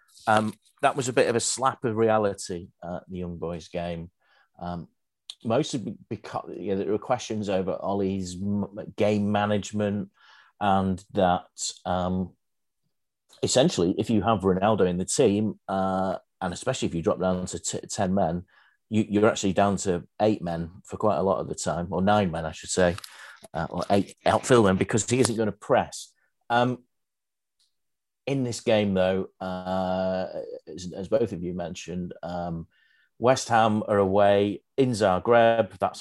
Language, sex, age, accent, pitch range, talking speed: English, male, 40-59, British, 90-110 Hz, 170 wpm